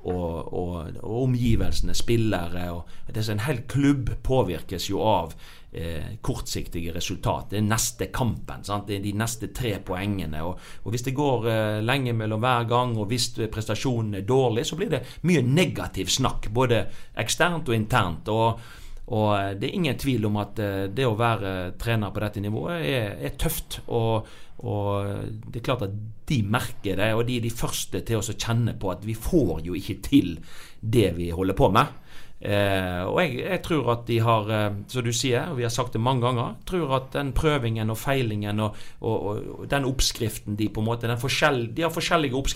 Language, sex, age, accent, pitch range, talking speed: English, male, 40-59, Swedish, 100-130 Hz, 190 wpm